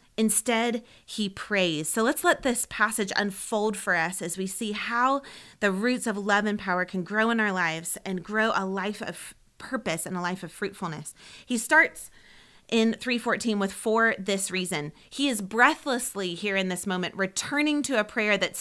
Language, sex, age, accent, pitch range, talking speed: English, female, 30-49, American, 180-230 Hz, 185 wpm